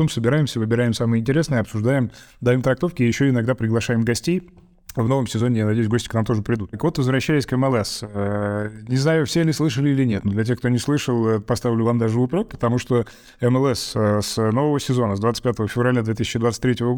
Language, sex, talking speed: Russian, male, 185 wpm